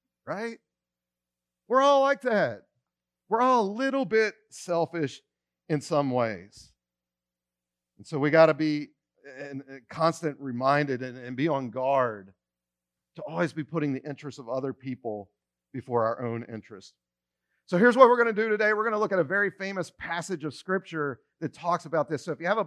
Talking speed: 185 wpm